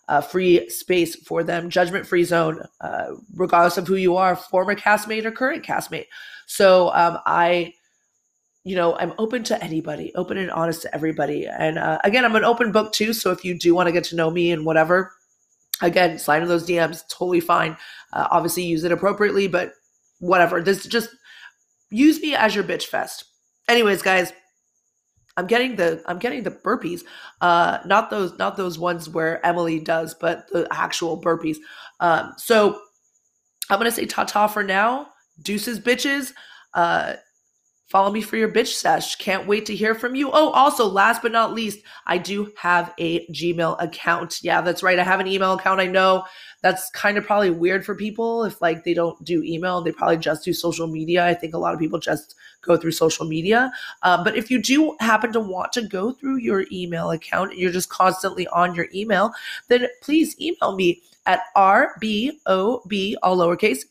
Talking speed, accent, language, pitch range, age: 190 wpm, American, English, 170-220 Hz, 30-49